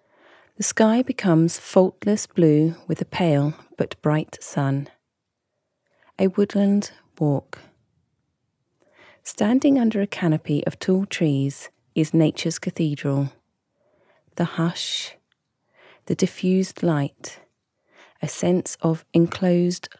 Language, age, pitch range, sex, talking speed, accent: English, 30-49, 150-190 Hz, female, 100 wpm, British